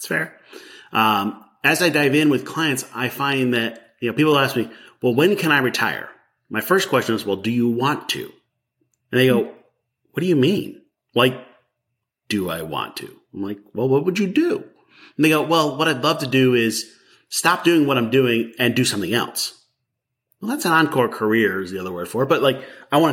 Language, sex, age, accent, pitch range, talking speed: English, male, 30-49, American, 110-150 Hz, 220 wpm